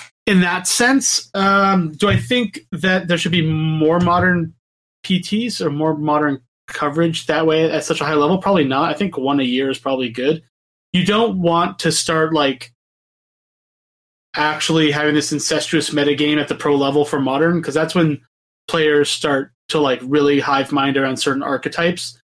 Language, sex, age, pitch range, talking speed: English, male, 30-49, 135-175 Hz, 175 wpm